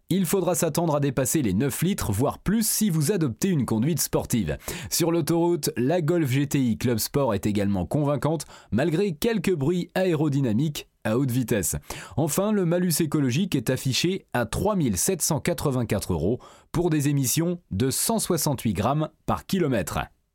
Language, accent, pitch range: French, French, 130-180 Hz